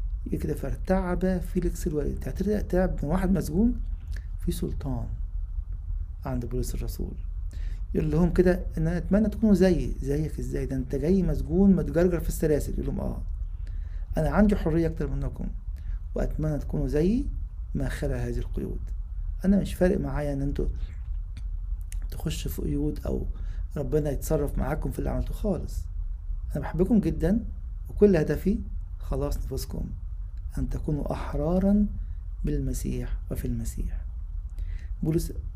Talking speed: 130 wpm